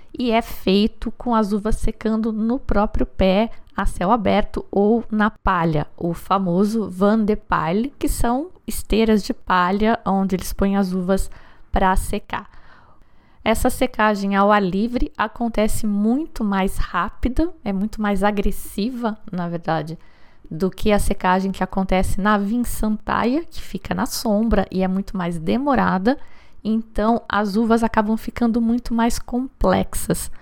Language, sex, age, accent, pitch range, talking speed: Portuguese, female, 20-39, Brazilian, 190-230 Hz, 145 wpm